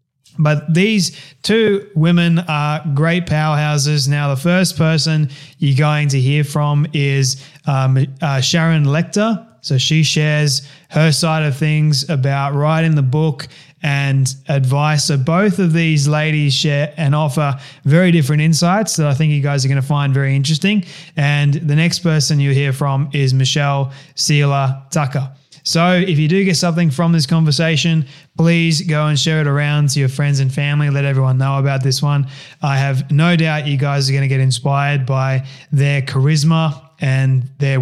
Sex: male